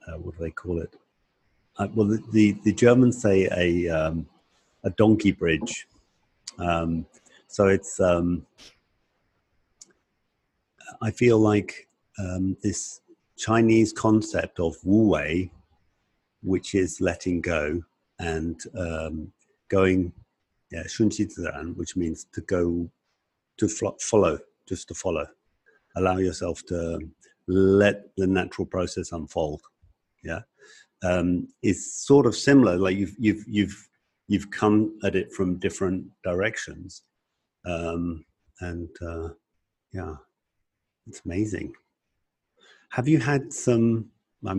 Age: 50-69